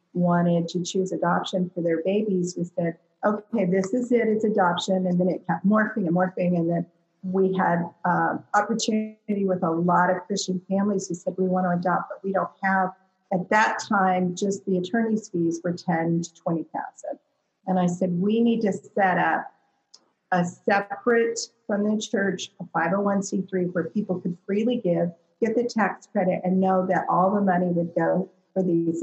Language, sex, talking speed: English, female, 185 wpm